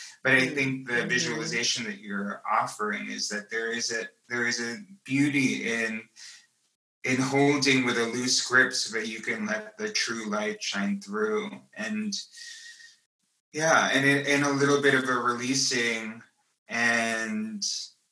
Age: 20-39